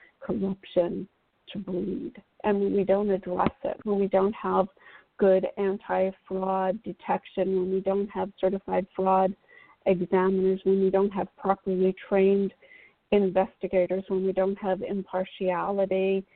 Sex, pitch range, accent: female, 190-230 Hz, American